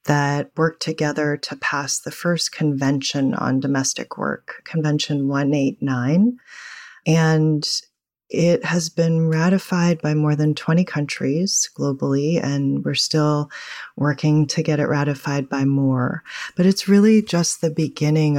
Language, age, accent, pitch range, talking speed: English, 30-49, American, 140-165 Hz, 130 wpm